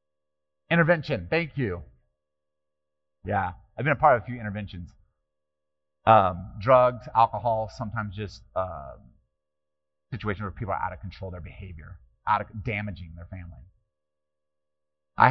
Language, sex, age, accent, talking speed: English, male, 30-49, American, 135 wpm